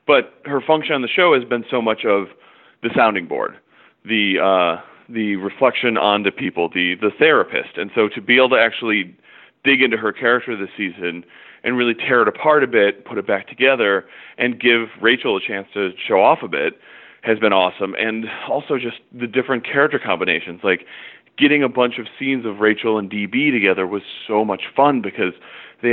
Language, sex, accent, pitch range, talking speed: English, male, American, 100-120 Hz, 195 wpm